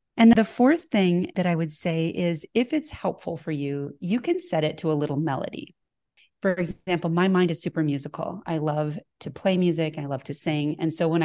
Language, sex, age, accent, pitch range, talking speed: English, female, 30-49, American, 155-195 Hz, 220 wpm